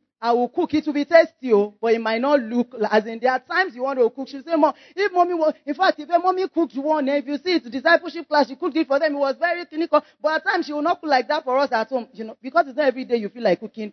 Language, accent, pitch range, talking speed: English, Nigerian, 205-290 Hz, 320 wpm